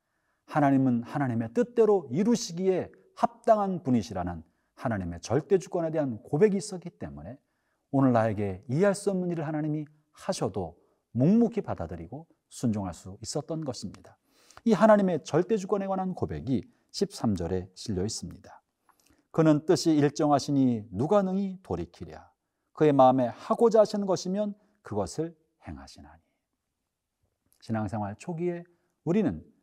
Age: 40-59